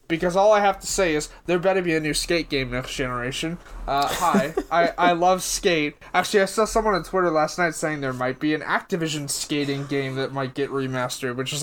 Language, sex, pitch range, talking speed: English, male, 140-175 Hz, 225 wpm